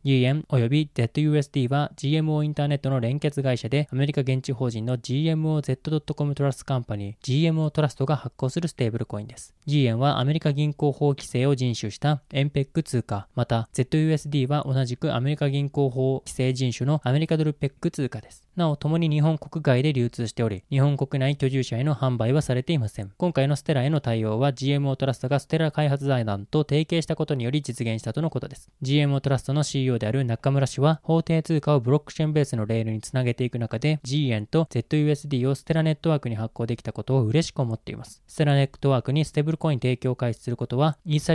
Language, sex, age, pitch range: Japanese, male, 20-39, 125-150 Hz